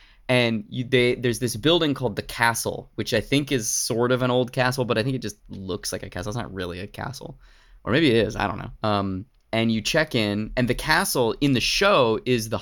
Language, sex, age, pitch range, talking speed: English, male, 20-39, 105-140 Hz, 245 wpm